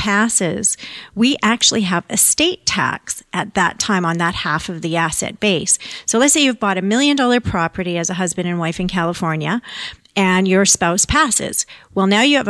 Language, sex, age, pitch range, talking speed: English, female, 40-59, 180-220 Hz, 190 wpm